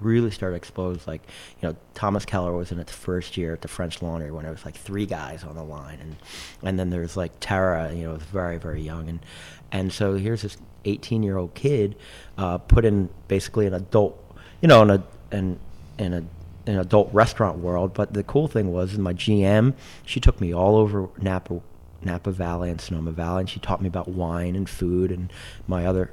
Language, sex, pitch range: English, male, 85-100 Hz